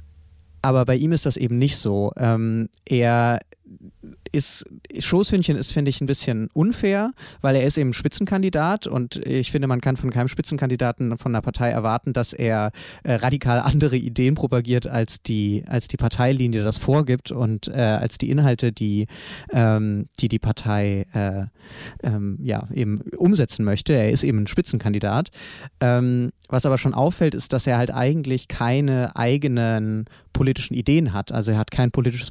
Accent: German